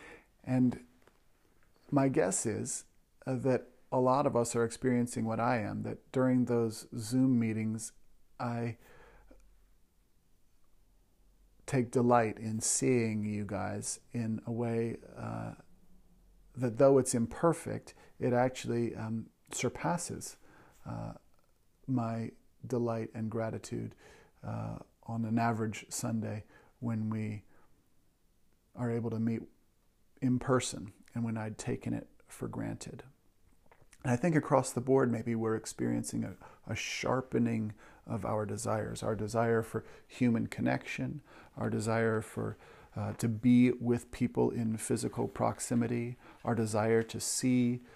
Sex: male